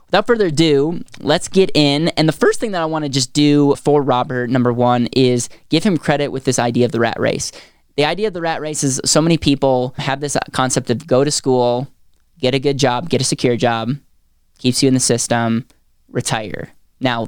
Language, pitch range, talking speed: English, 120-140 Hz, 215 wpm